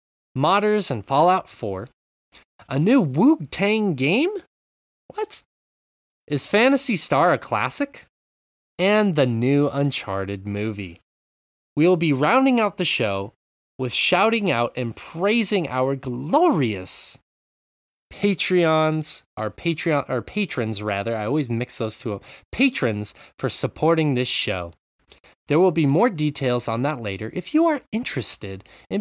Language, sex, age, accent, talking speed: English, male, 20-39, American, 130 wpm